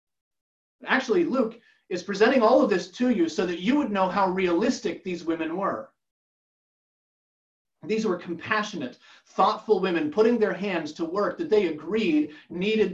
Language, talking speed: English, 155 wpm